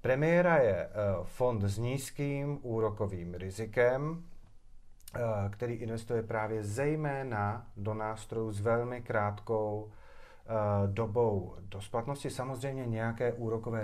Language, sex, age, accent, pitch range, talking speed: Czech, male, 40-59, native, 100-125 Hz, 95 wpm